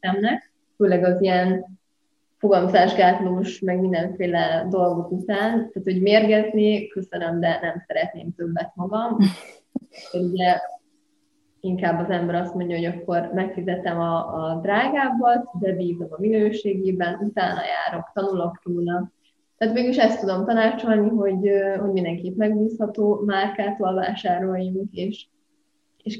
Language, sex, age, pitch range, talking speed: Hungarian, female, 20-39, 180-220 Hz, 115 wpm